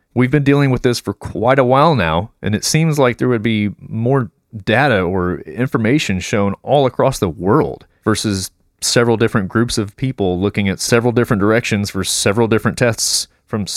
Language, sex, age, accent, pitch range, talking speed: English, male, 30-49, American, 95-125 Hz, 185 wpm